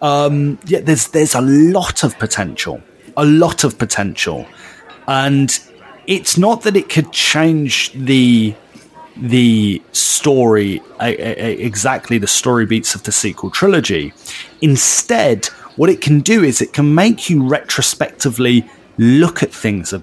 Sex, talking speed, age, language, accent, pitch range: male, 145 wpm, 30-49, English, British, 110-145 Hz